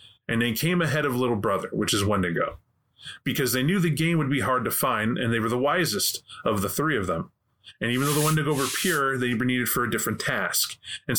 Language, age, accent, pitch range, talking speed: English, 30-49, American, 115-155 Hz, 240 wpm